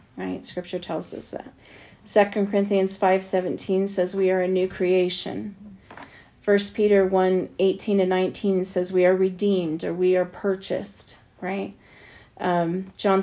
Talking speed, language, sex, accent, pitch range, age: 145 wpm, English, female, American, 180-200 Hz, 40-59